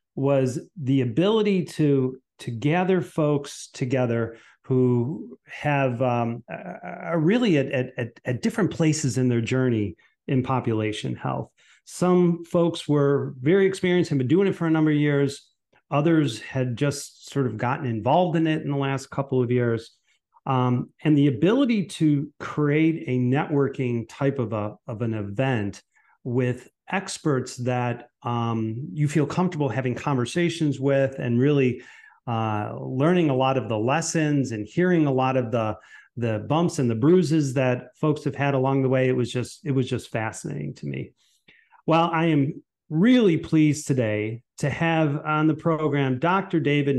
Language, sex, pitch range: English, male, 125-155 Hz